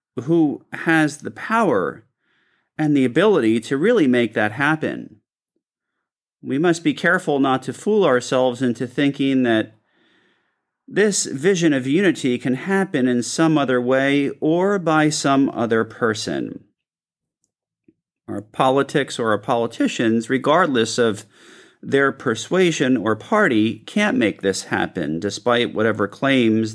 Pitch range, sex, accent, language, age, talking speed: 110-155 Hz, male, American, English, 40-59, 125 wpm